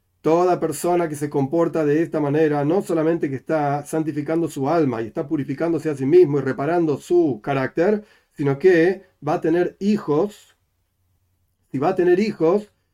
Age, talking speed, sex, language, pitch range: 40-59, 165 wpm, male, Spanish, 130-175 Hz